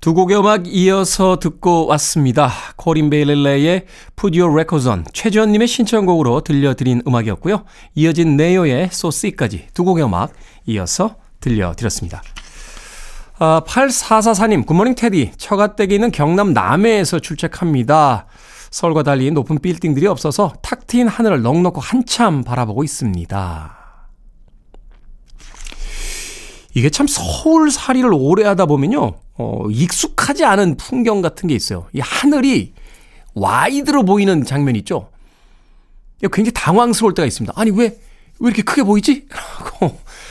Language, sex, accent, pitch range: Korean, male, native, 130-205 Hz